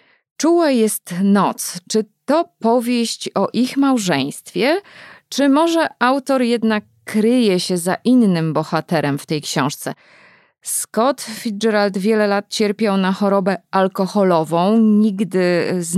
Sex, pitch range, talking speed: female, 175-225 Hz, 115 wpm